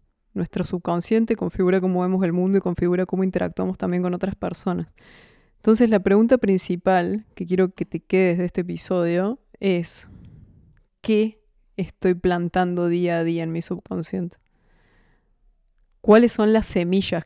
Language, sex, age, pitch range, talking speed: Spanish, female, 20-39, 180-210 Hz, 145 wpm